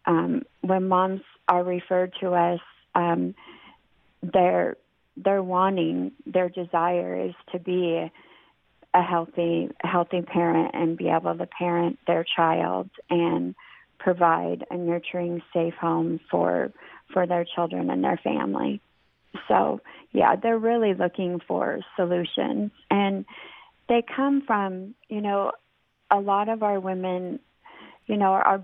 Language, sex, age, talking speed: English, female, 40-59, 130 wpm